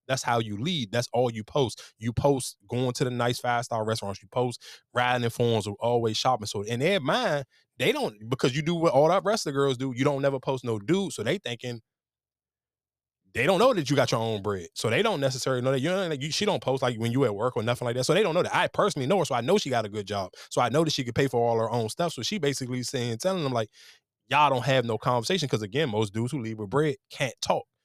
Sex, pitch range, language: male, 115-145 Hz, English